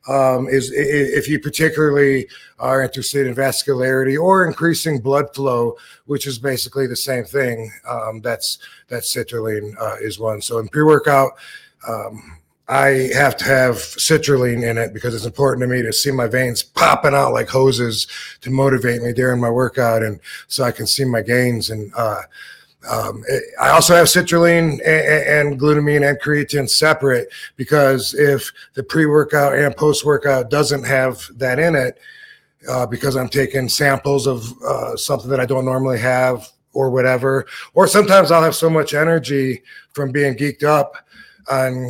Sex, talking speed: male, 165 wpm